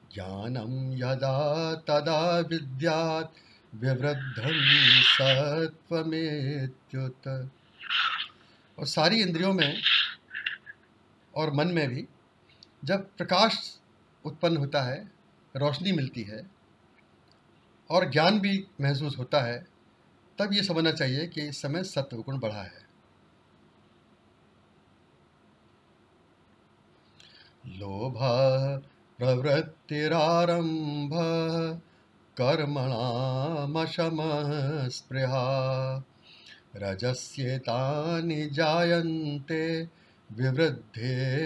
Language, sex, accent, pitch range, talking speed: Hindi, male, native, 130-165 Hz, 55 wpm